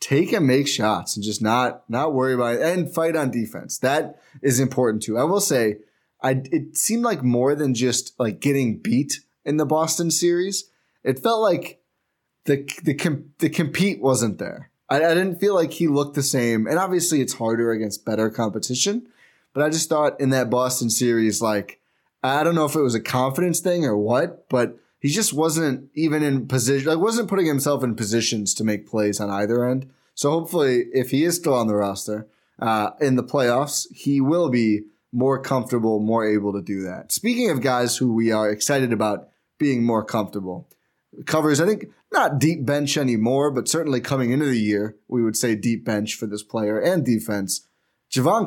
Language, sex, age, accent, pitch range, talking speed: English, male, 20-39, American, 110-155 Hz, 195 wpm